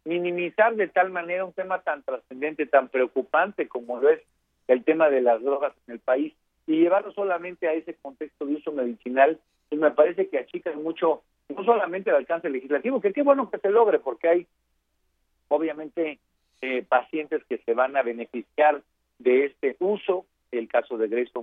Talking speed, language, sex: 180 wpm, Spanish, male